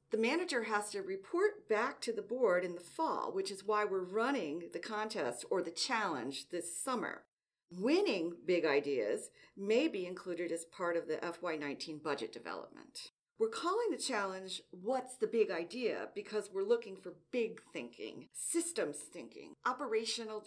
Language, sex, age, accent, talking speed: English, female, 40-59, American, 160 wpm